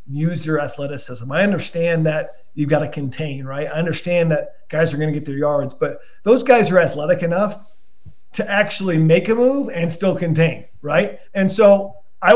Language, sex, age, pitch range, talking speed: English, male, 40-59, 160-195 Hz, 190 wpm